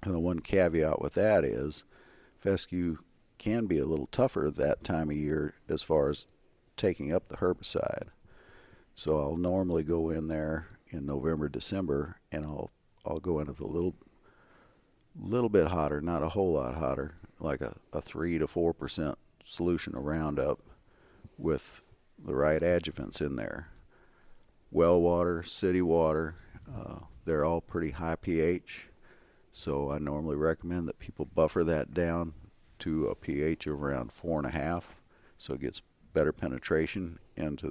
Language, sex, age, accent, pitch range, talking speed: English, male, 50-69, American, 75-90 Hz, 155 wpm